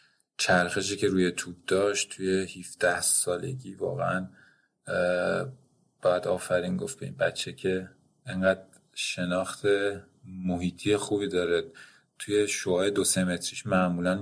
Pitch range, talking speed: 90-100 Hz, 110 wpm